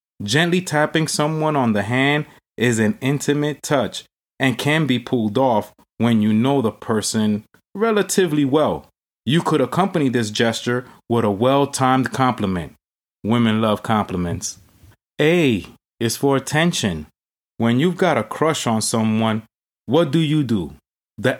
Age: 30-49